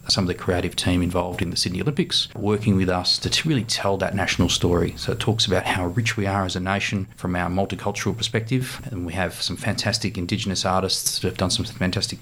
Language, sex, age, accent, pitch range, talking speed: English, male, 30-49, Australian, 90-115 Hz, 225 wpm